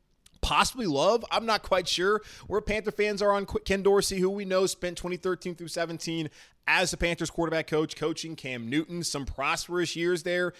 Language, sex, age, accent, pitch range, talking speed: English, male, 20-39, American, 115-160 Hz, 185 wpm